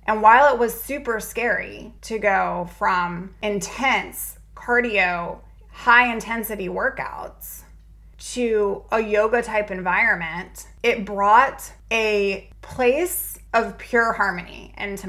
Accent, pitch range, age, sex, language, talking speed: American, 195-240 Hz, 20-39, female, English, 105 wpm